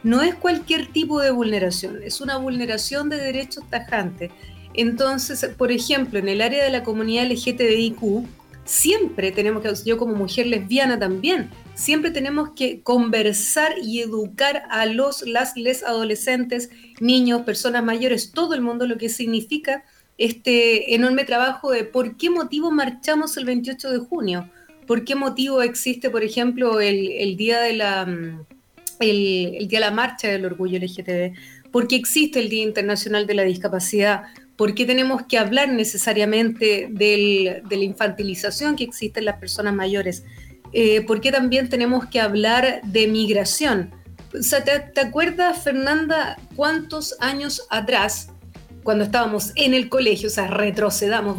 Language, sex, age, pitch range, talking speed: Spanish, female, 30-49, 210-270 Hz, 155 wpm